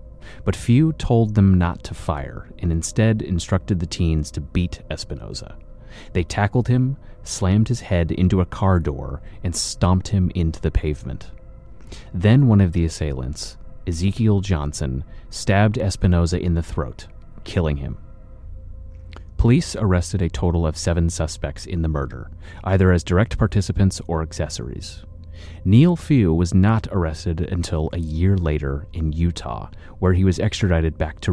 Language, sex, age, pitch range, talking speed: English, male, 30-49, 80-100 Hz, 150 wpm